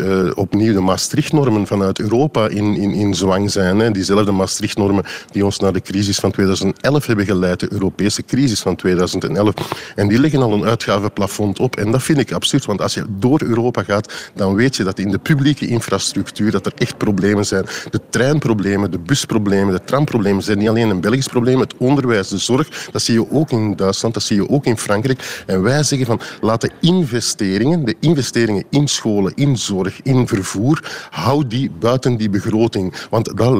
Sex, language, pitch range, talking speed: male, Dutch, 100-130 Hz, 195 wpm